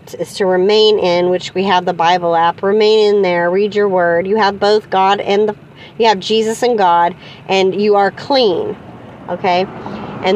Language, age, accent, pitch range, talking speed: English, 40-59, American, 170-210 Hz, 190 wpm